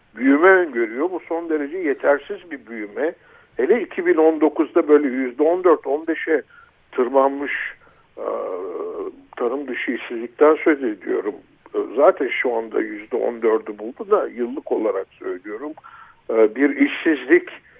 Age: 60-79